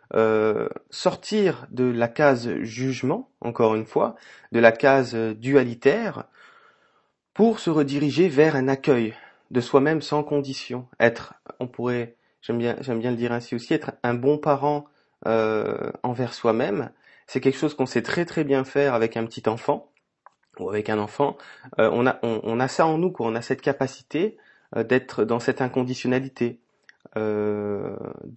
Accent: French